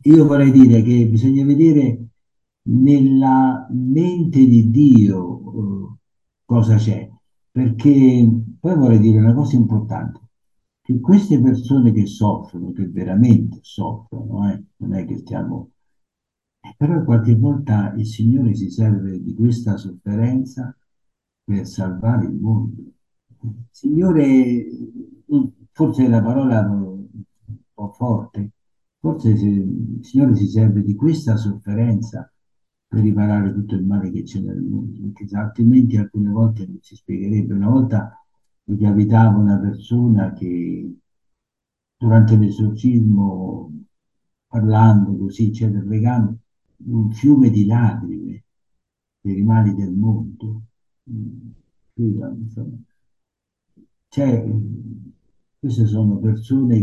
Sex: male